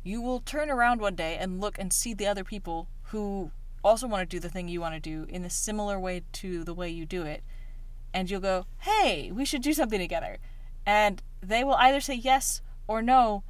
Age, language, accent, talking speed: 30-49, English, American, 225 wpm